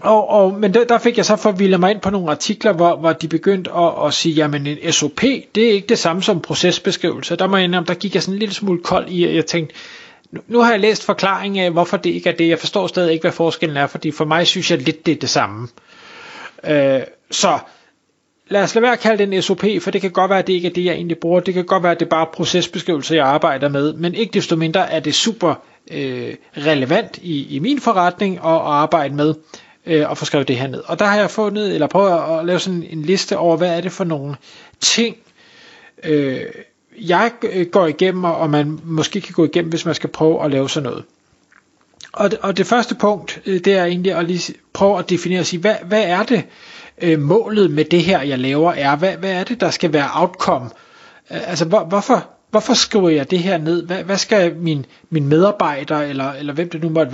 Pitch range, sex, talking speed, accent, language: 160-200 Hz, male, 235 wpm, native, Danish